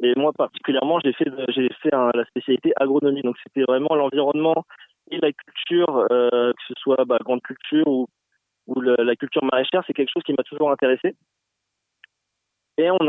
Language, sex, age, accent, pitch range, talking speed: French, male, 20-39, French, 125-150 Hz, 175 wpm